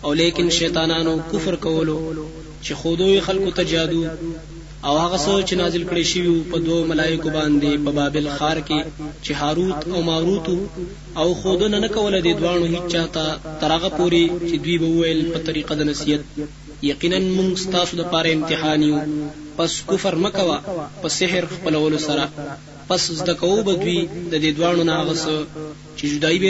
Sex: male